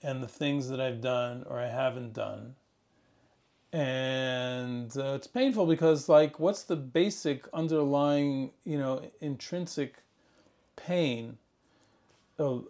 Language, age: English, 40-59